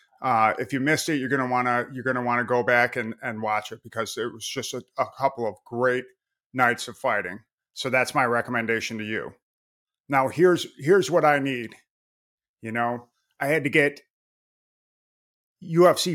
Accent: American